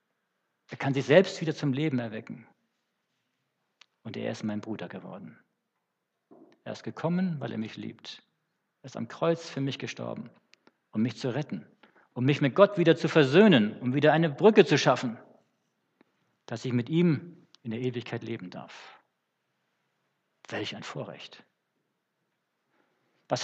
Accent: German